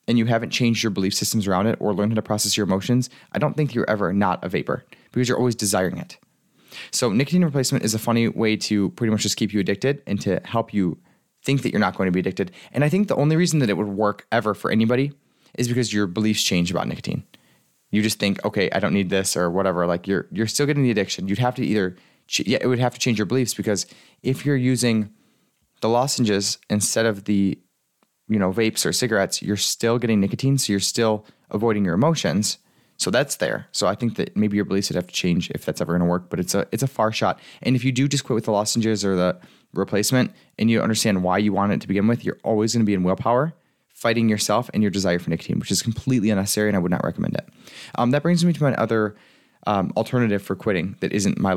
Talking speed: 250 wpm